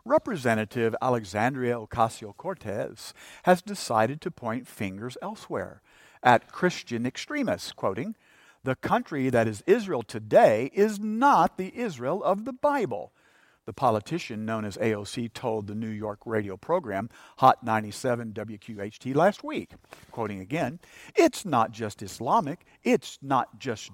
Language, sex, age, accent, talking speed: English, male, 50-69, American, 130 wpm